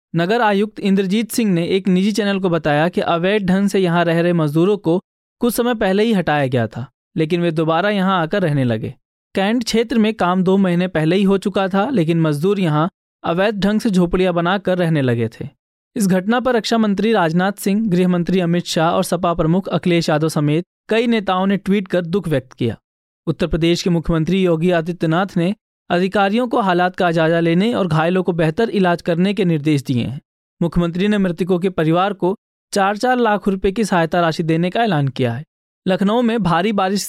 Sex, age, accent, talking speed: male, 20-39, native, 200 wpm